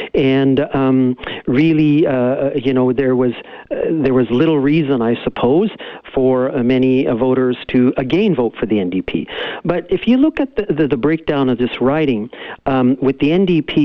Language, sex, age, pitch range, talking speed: English, male, 50-69, 125-150 Hz, 180 wpm